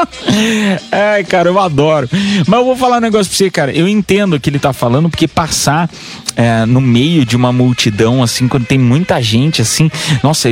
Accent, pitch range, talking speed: Brazilian, 150-210 Hz, 195 wpm